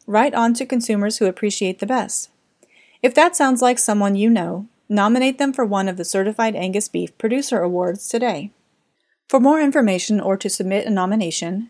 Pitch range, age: 190-240 Hz, 30-49